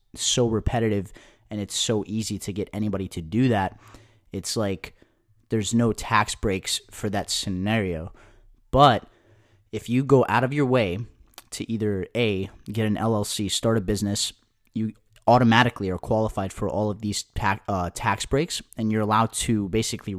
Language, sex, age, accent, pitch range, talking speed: English, male, 30-49, American, 100-115 Hz, 160 wpm